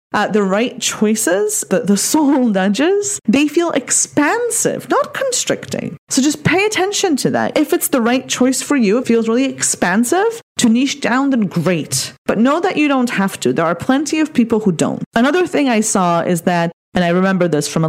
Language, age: English, 30-49